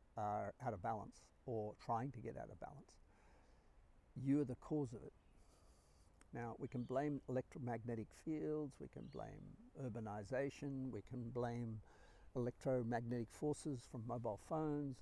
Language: English